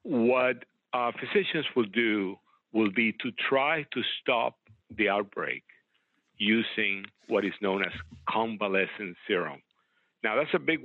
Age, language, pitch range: 50-69, English, 100-115 Hz